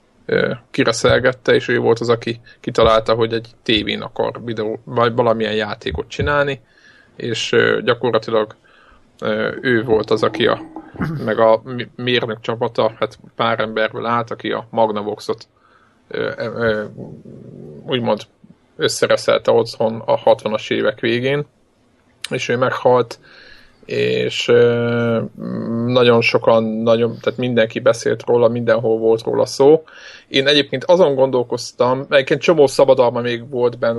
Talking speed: 115 wpm